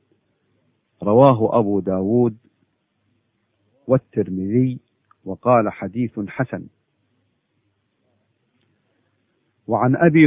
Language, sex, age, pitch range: Arabic, male, 50-69, 105-125 Hz